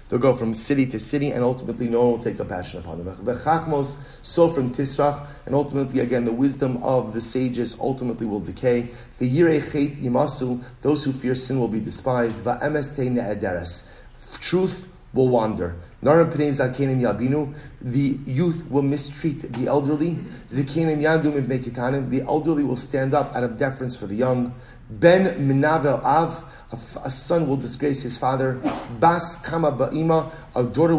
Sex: male